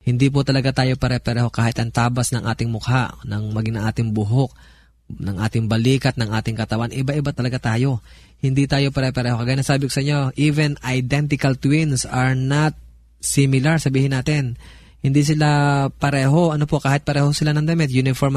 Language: Filipino